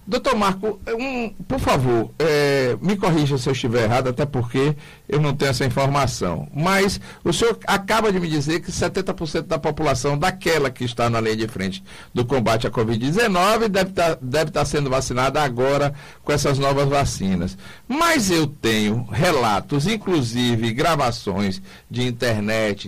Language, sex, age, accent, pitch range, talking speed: Portuguese, male, 60-79, Brazilian, 130-200 Hz, 160 wpm